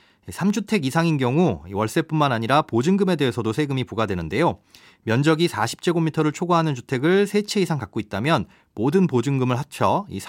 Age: 30-49